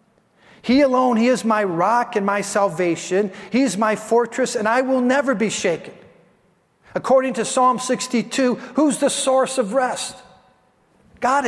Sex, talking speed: male, 150 wpm